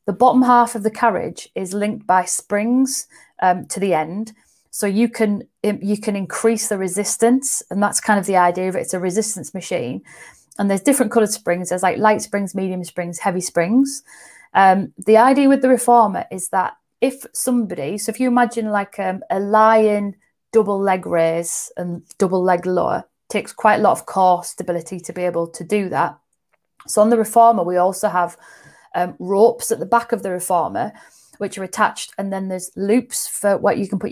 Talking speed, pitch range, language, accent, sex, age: 200 wpm, 185-230 Hz, English, British, female, 30-49